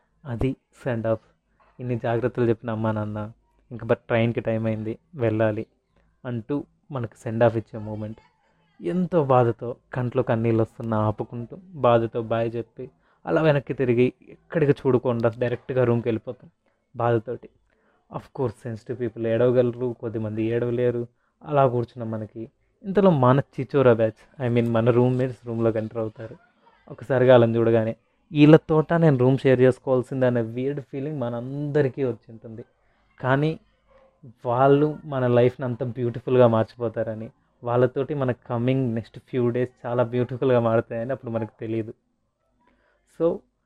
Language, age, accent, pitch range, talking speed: Telugu, 20-39, native, 115-135 Hz, 130 wpm